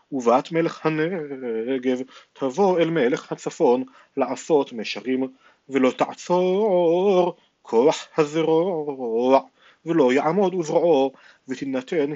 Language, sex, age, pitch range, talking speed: Hebrew, male, 40-59, 130-170 Hz, 85 wpm